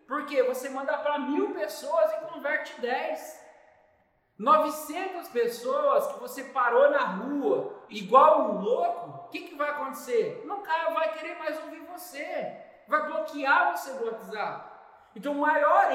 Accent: Brazilian